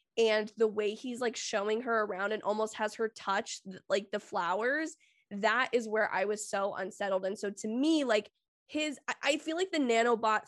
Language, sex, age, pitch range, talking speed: English, female, 10-29, 210-250 Hz, 195 wpm